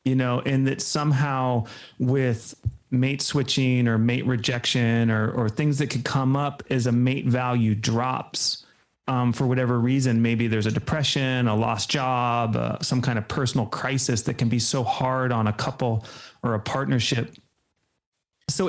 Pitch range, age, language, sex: 125-140 Hz, 30-49, English, male